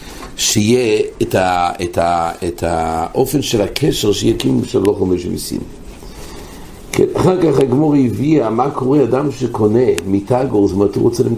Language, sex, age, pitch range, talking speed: English, male, 60-79, 100-135 Hz, 135 wpm